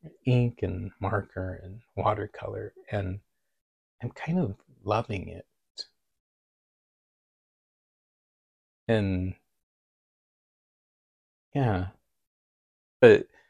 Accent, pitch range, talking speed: American, 95-125 Hz, 60 wpm